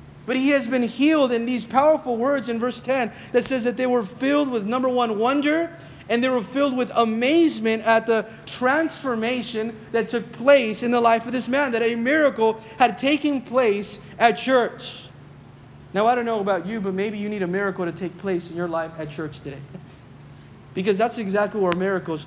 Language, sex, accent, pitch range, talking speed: English, male, American, 160-225 Hz, 200 wpm